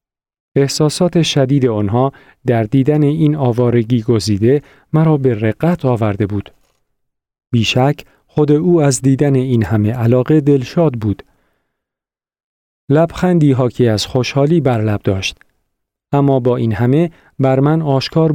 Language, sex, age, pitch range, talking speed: Persian, male, 40-59, 115-155 Hz, 125 wpm